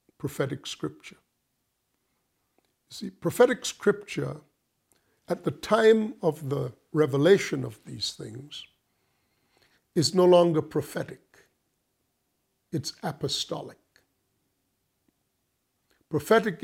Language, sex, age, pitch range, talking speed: English, male, 50-69, 140-180 Hz, 80 wpm